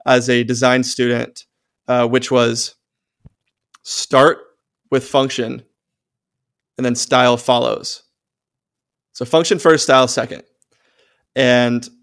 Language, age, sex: English, 20-39, male